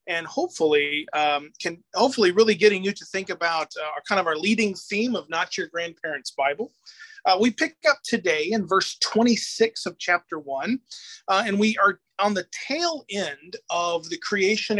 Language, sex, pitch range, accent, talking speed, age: English, male, 170-225 Hz, American, 185 wpm, 30-49